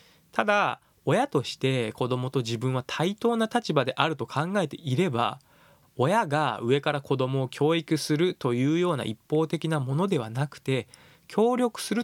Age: 20-39